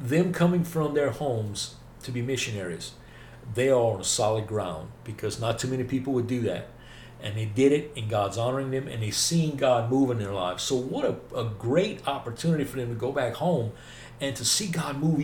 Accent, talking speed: American, 215 wpm